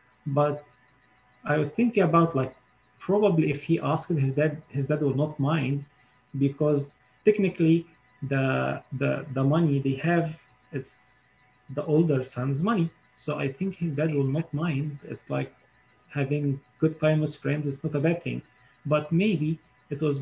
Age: 30-49